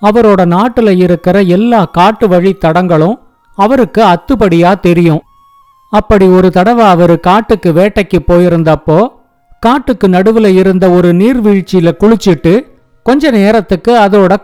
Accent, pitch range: native, 180-230 Hz